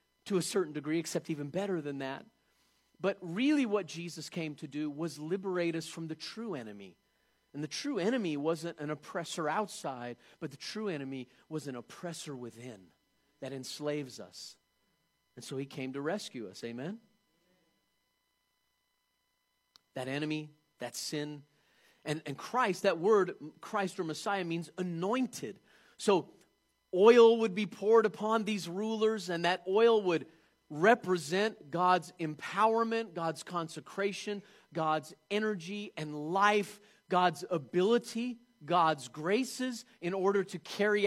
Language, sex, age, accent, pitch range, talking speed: English, male, 40-59, American, 155-220 Hz, 135 wpm